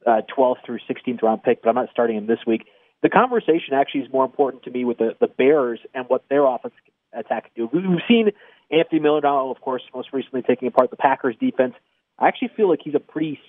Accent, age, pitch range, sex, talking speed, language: American, 30-49, 125-150 Hz, male, 225 wpm, English